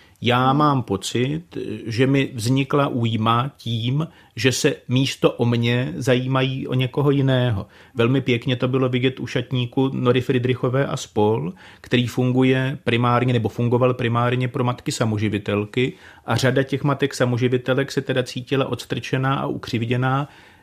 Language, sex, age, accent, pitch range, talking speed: Czech, male, 40-59, native, 120-140 Hz, 135 wpm